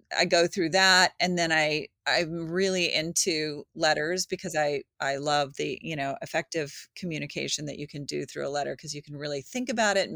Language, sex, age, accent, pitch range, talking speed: English, female, 30-49, American, 160-210 Hz, 215 wpm